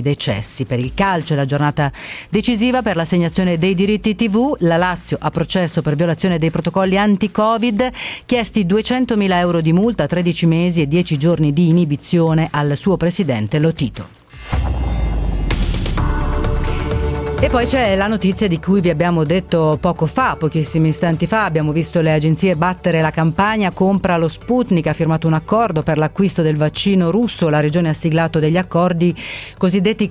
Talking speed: 155 wpm